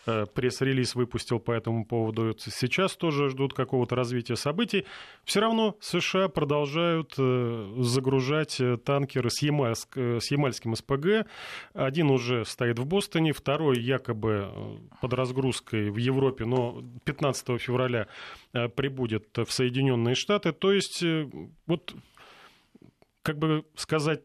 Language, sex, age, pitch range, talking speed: Russian, male, 30-49, 120-150 Hz, 110 wpm